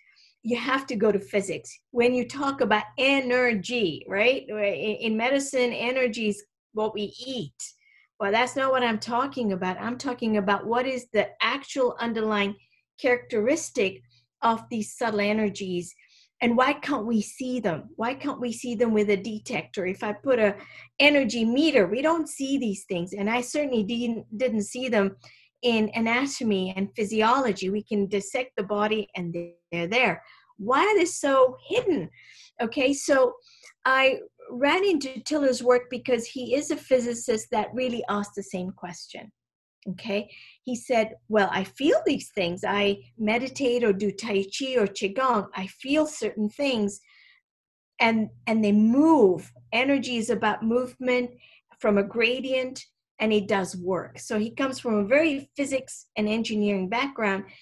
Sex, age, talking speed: female, 40-59, 155 wpm